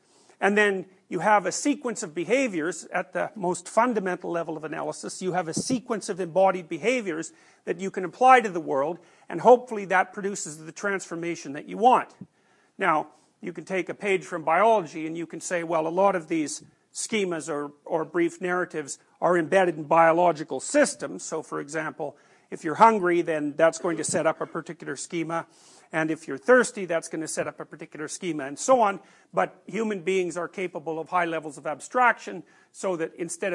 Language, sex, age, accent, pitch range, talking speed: English, male, 50-69, American, 165-195 Hz, 195 wpm